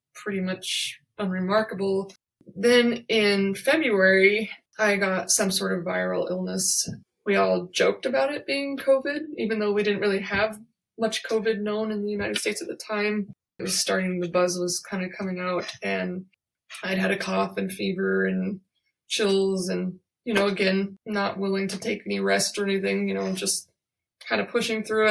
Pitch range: 180-210 Hz